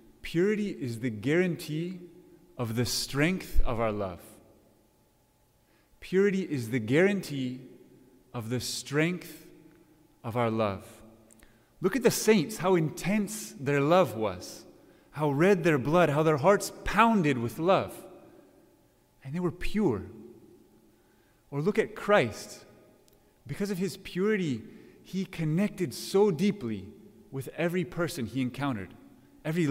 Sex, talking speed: male, 125 wpm